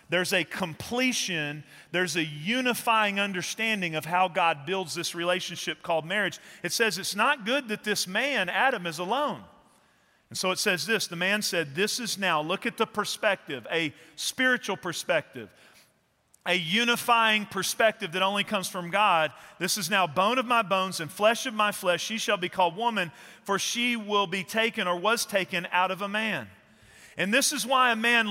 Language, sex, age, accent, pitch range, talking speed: English, male, 40-59, American, 185-230 Hz, 185 wpm